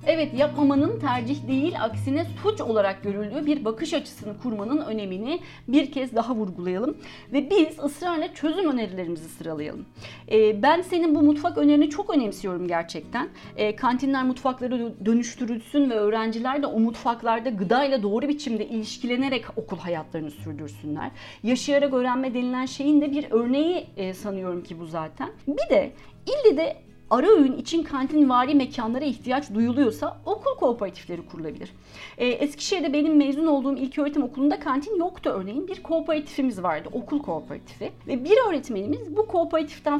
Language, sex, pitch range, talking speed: Turkish, female, 215-295 Hz, 145 wpm